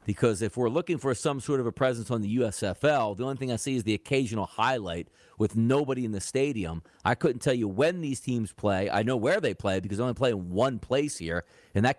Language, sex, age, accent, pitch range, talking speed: English, male, 40-59, American, 110-155 Hz, 250 wpm